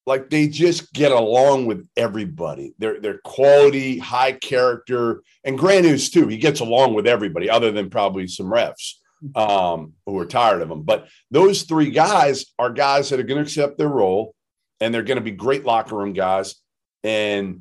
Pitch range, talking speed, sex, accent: 115-165 Hz, 185 wpm, male, American